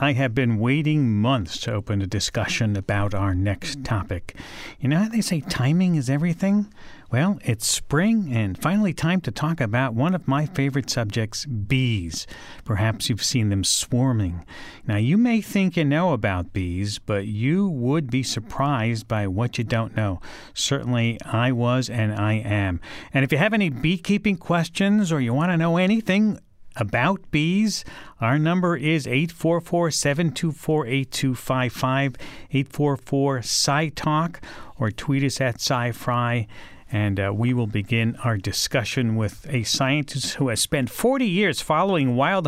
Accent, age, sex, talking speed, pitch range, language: American, 50-69, male, 155 wpm, 115-170 Hz, English